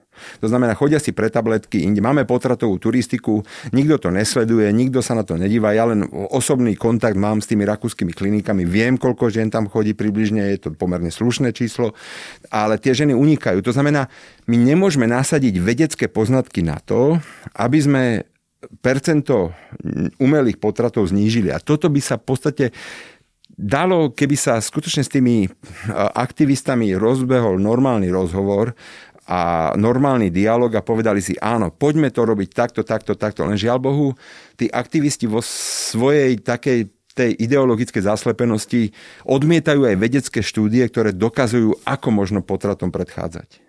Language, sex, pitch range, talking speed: Slovak, male, 105-130 Hz, 145 wpm